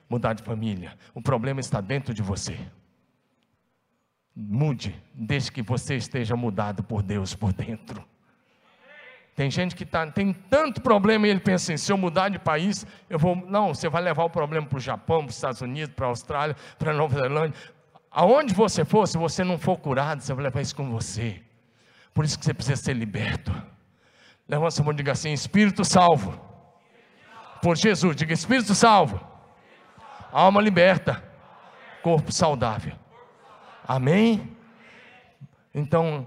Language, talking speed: Portuguese, 160 wpm